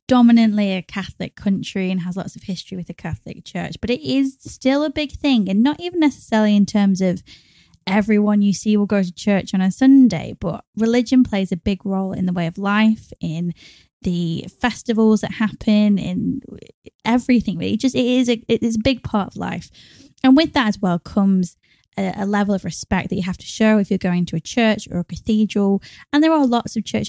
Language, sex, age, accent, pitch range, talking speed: English, female, 10-29, British, 185-230 Hz, 215 wpm